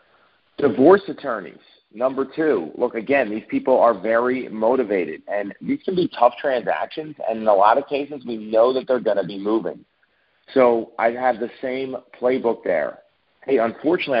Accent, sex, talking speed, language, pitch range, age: American, male, 170 wpm, English, 110-135 Hz, 40-59